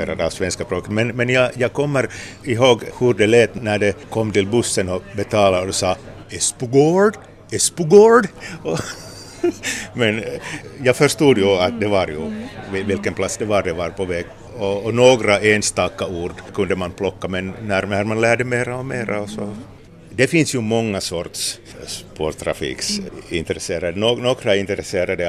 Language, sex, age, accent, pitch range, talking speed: Swedish, male, 60-79, Finnish, 95-120 Hz, 145 wpm